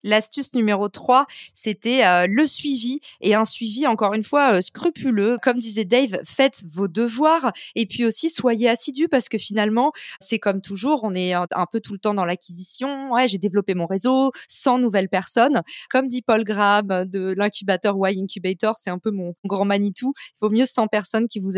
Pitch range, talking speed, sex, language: 200-245 Hz, 195 wpm, female, French